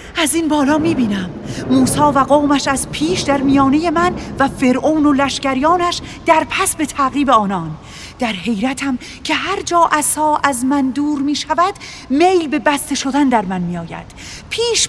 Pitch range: 275-370 Hz